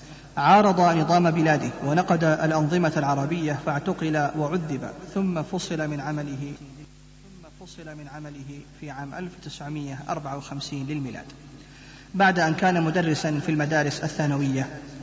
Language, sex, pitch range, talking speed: Arabic, male, 150-170 Hz, 90 wpm